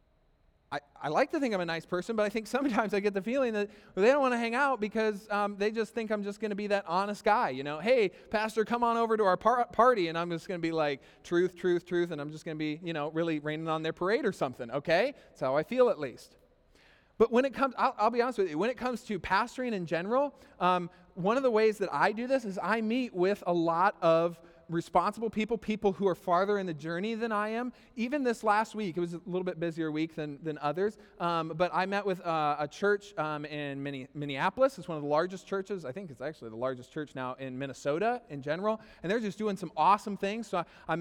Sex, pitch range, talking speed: male, 170-220 Hz, 260 wpm